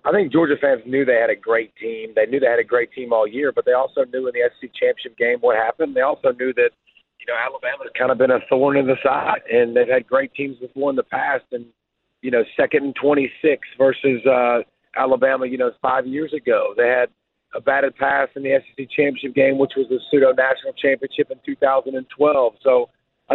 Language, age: English, 40-59